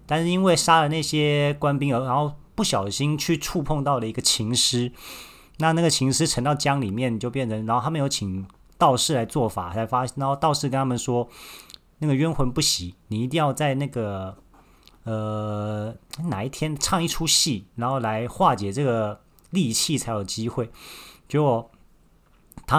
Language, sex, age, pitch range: Chinese, male, 30-49, 115-145 Hz